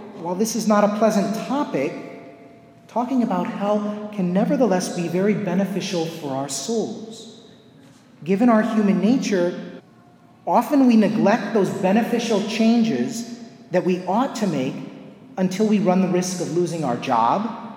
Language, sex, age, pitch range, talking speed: English, male, 30-49, 180-230 Hz, 140 wpm